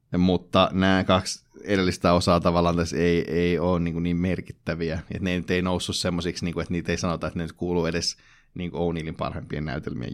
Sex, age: male, 30-49